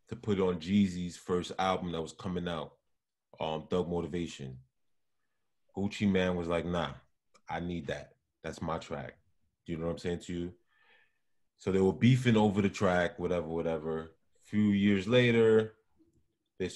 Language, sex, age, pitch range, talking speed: English, male, 20-39, 85-105 Hz, 170 wpm